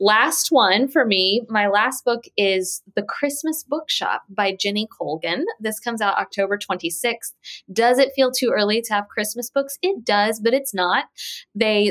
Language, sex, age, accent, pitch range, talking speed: English, female, 20-39, American, 180-230 Hz, 170 wpm